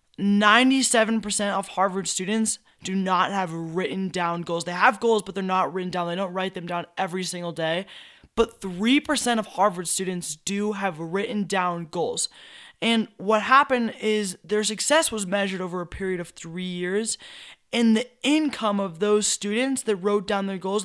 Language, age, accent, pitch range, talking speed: English, 20-39, American, 190-230 Hz, 175 wpm